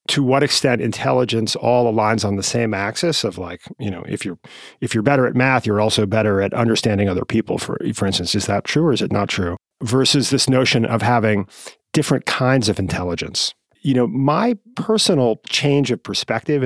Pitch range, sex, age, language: 105-135 Hz, male, 40-59, English